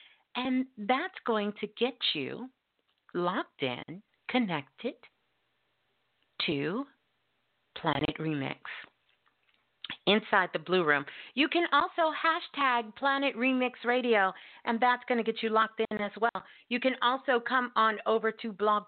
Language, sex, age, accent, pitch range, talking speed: English, female, 50-69, American, 195-260 Hz, 130 wpm